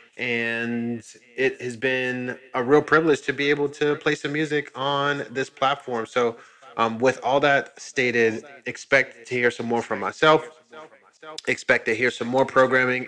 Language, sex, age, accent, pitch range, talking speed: English, male, 20-39, American, 115-130 Hz, 175 wpm